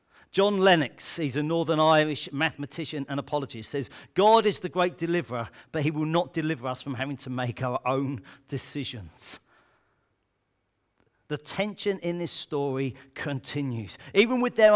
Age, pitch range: 40-59, 120-180 Hz